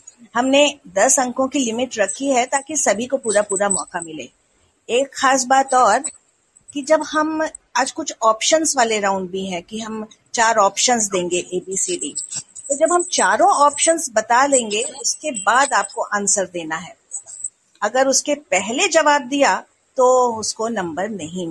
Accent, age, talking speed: native, 50-69, 155 wpm